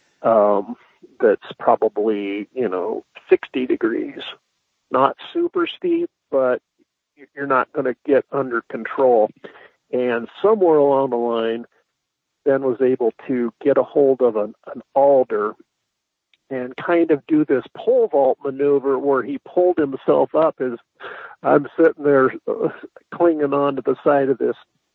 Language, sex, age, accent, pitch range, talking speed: English, male, 50-69, American, 130-170 Hz, 140 wpm